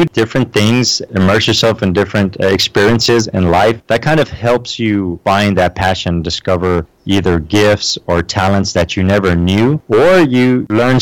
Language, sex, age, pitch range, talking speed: English, male, 30-49, 90-110 Hz, 160 wpm